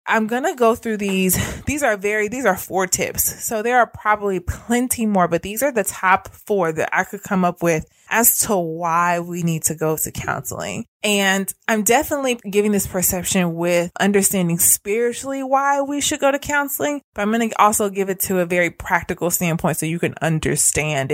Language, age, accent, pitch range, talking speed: English, 20-39, American, 170-225 Hz, 195 wpm